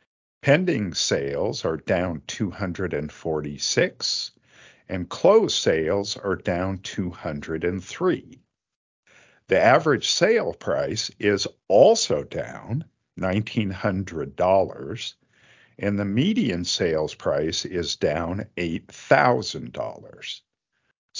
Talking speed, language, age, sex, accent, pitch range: 75 wpm, English, 50-69, male, American, 95-130 Hz